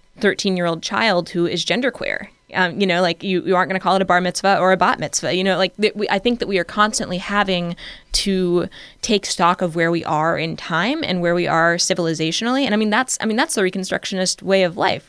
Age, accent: 20-39, American